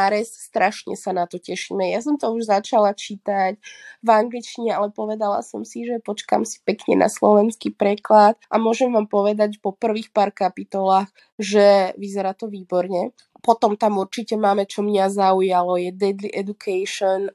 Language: Slovak